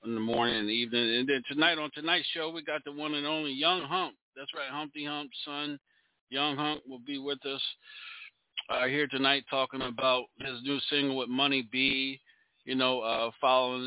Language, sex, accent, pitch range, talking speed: English, male, American, 115-145 Hz, 195 wpm